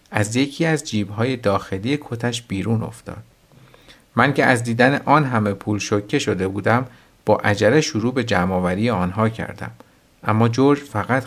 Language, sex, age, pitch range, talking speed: Persian, male, 50-69, 100-140 Hz, 150 wpm